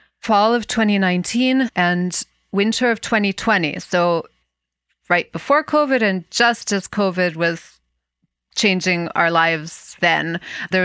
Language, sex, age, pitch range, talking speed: English, female, 30-49, 170-200 Hz, 115 wpm